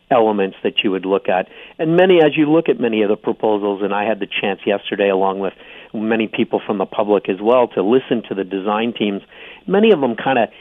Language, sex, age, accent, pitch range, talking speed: English, male, 50-69, American, 105-125 Hz, 230 wpm